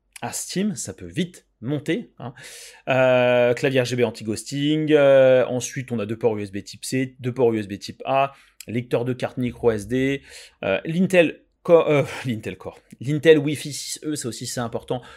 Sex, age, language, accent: male, 30-49, French, French